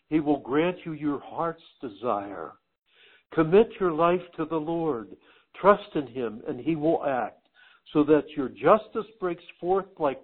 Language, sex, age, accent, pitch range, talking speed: English, male, 60-79, American, 150-200 Hz, 160 wpm